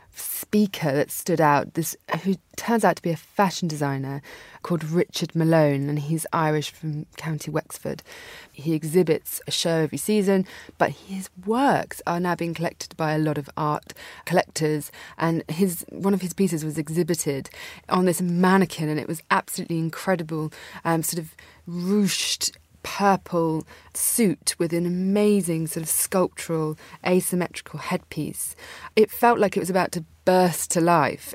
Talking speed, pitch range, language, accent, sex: 155 wpm, 155-190 Hz, English, British, female